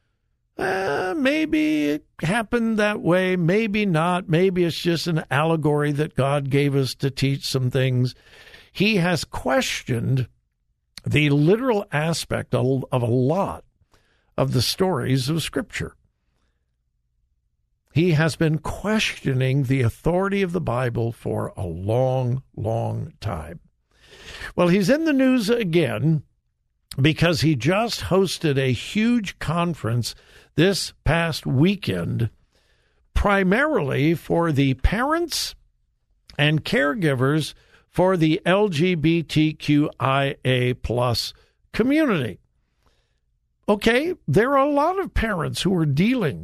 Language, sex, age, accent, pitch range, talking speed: English, male, 60-79, American, 130-190 Hz, 110 wpm